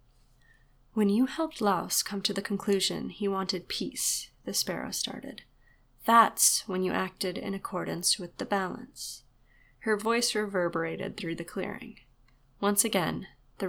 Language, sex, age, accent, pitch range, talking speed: English, female, 20-39, American, 165-210 Hz, 140 wpm